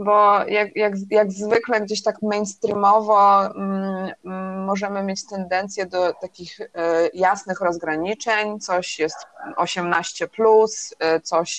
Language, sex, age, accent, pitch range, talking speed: Polish, female, 20-39, native, 170-200 Hz, 115 wpm